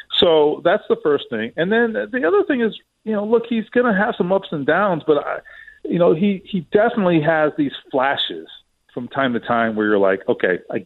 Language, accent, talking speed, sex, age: English, American, 225 wpm, male, 40-59